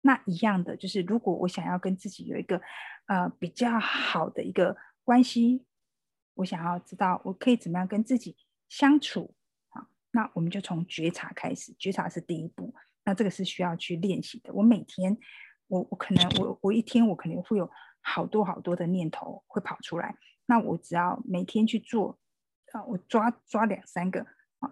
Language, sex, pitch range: Chinese, female, 185-245 Hz